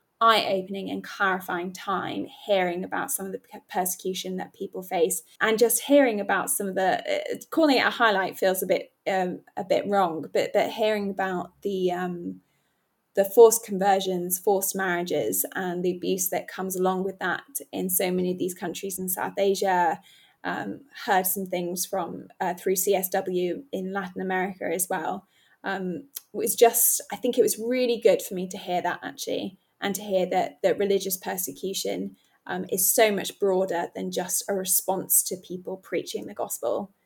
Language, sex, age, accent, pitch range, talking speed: English, female, 10-29, British, 185-215 Hz, 180 wpm